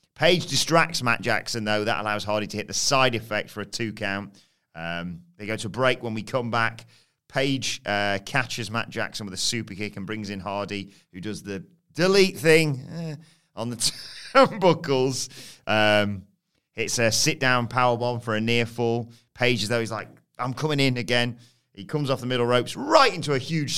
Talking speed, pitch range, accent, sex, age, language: 190 wpm, 105-130 Hz, British, male, 30-49, English